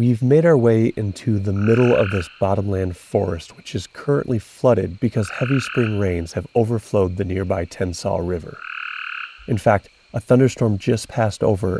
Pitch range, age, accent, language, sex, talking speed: 100-125 Hz, 30-49, American, English, male, 165 wpm